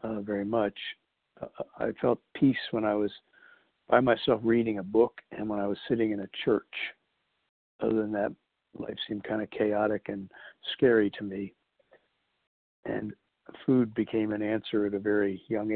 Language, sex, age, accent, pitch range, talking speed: English, male, 60-79, American, 105-115 Hz, 170 wpm